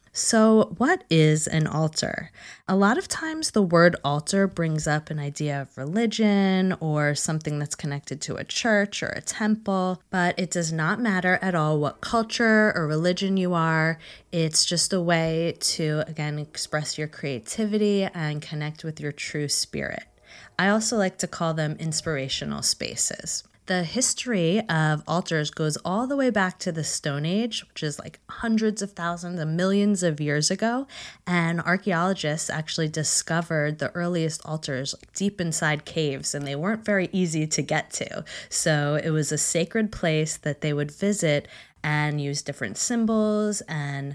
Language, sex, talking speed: English, female, 165 wpm